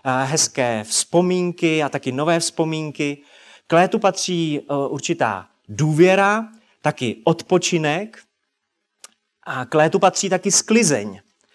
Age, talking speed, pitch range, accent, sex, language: 30-49, 100 wpm, 140-175 Hz, native, male, Czech